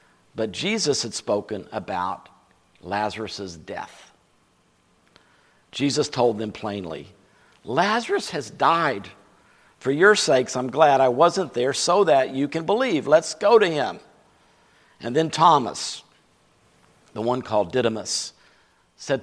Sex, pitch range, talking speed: male, 115-155 Hz, 120 wpm